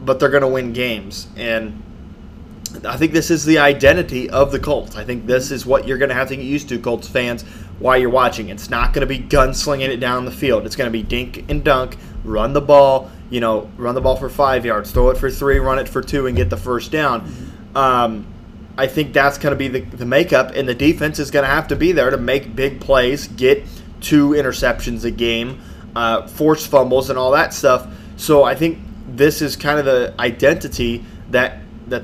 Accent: American